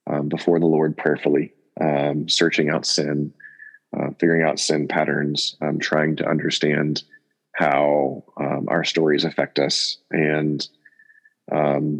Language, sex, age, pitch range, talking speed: English, male, 30-49, 75-90 Hz, 130 wpm